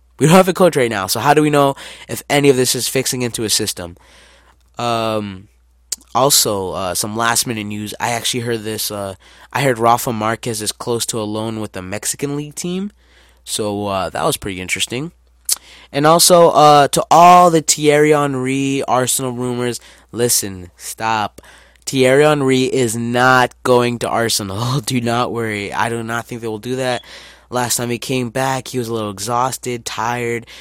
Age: 20-39